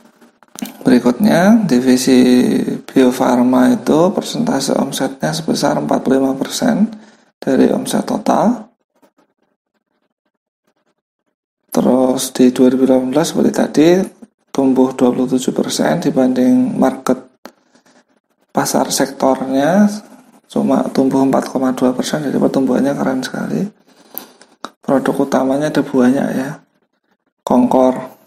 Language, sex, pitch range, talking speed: Indonesian, male, 130-190 Hz, 70 wpm